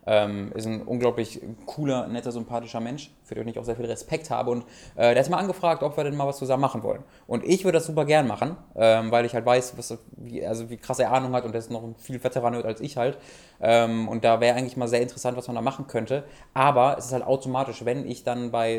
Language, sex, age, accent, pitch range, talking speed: German, male, 20-39, German, 115-130 Hz, 260 wpm